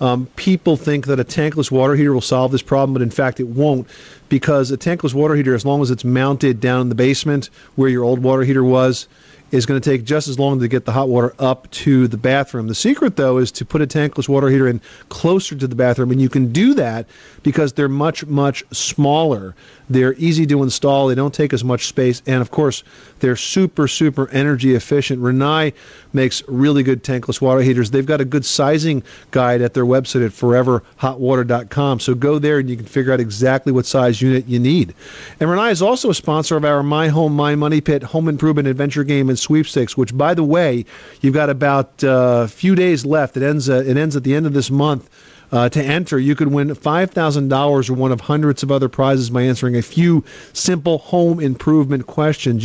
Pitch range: 130-150 Hz